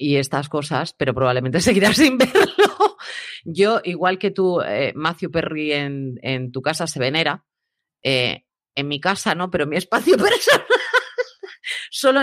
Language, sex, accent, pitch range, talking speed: Spanish, female, Spanish, 130-190 Hz, 155 wpm